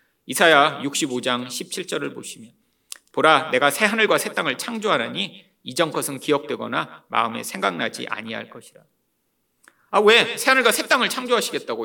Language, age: Korean, 40-59